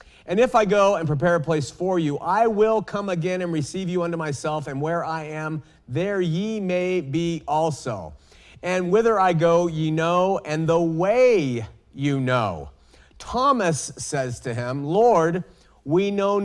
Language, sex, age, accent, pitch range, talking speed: English, male, 40-59, American, 140-175 Hz, 170 wpm